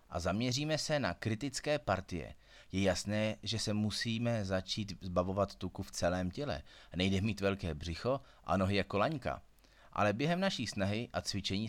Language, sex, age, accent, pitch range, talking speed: Czech, male, 30-49, native, 90-110 Hz, 160 wpm